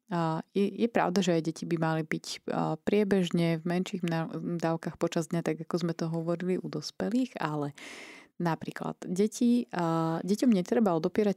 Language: Slovak